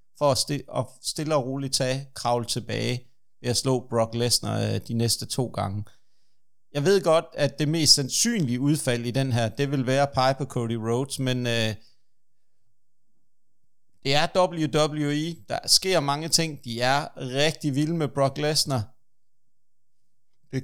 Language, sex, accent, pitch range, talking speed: Danish, male, native, 120-145 Hz, 145 wpm